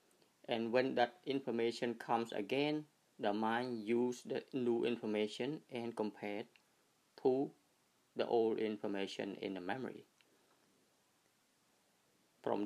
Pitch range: 105-125 Hz